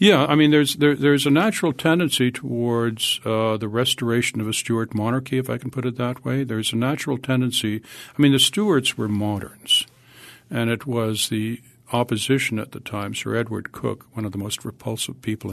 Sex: male